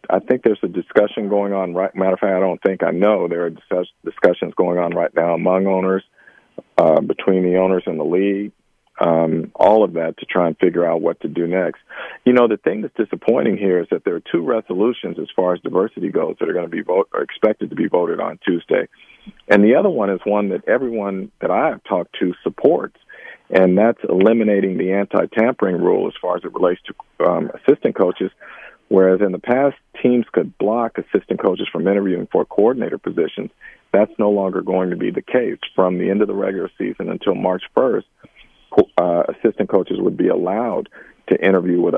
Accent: American